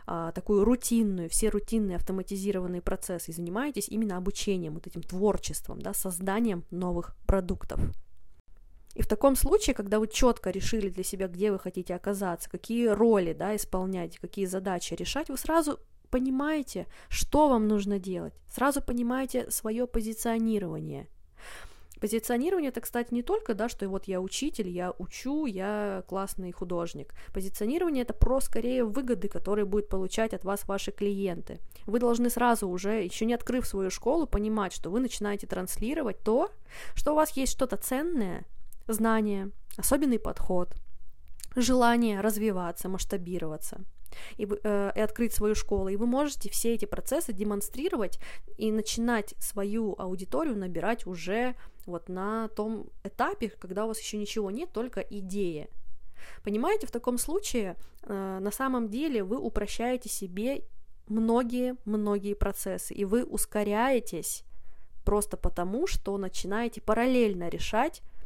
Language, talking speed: Russian, 140 wpm